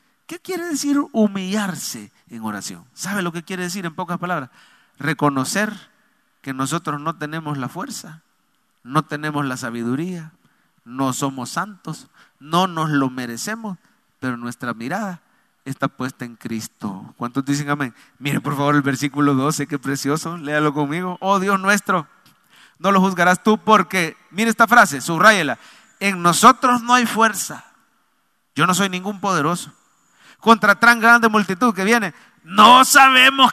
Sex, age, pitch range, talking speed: male, 40-59, 150-215 Hz, 145 wpm